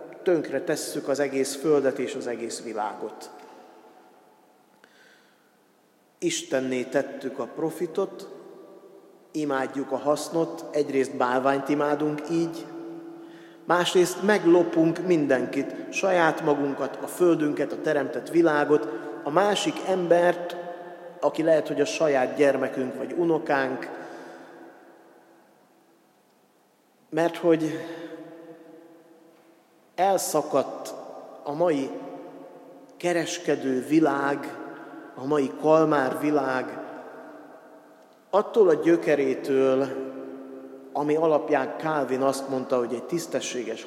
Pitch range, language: 135-170 Hz, Hungarian